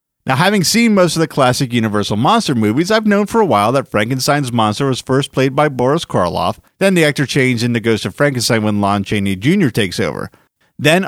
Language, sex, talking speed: English, male, 210 wpm